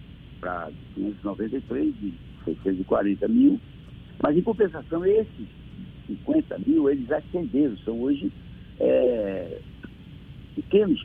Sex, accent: male, Brazilian